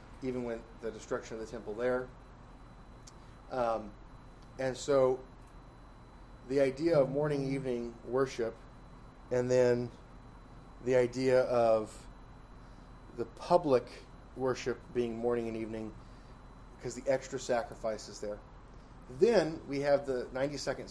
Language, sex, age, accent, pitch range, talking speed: English, male, 30-49, American, 115-135 Hz, 115 wpm